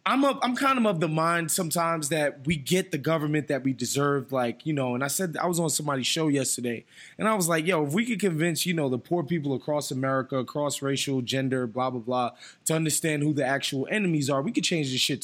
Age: 20-39